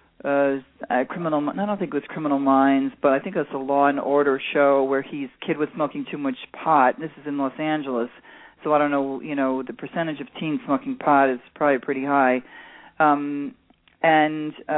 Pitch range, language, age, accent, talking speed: 140-170 Hz, English, 40-59, American, 205 wpm